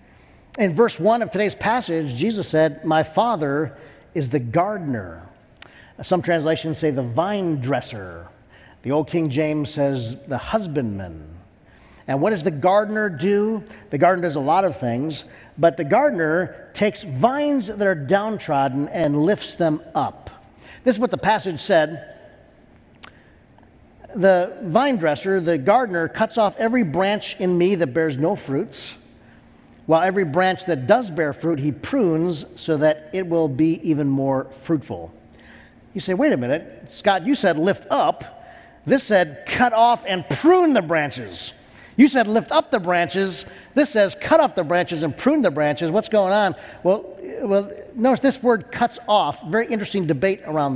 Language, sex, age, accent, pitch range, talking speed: English, male, 50-69, American, 150-205 Hz, 160 wpm